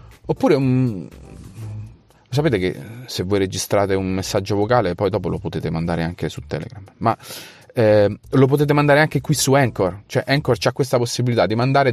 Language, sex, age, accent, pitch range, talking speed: Italian, male, 30-49, native, 95-125 Hz, 170 wpm